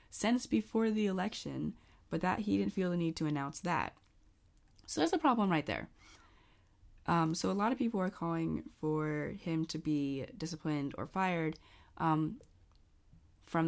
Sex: female